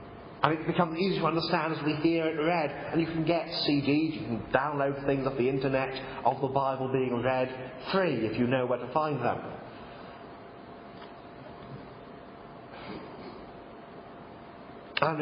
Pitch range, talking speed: 130-150 Hz, 145 wpm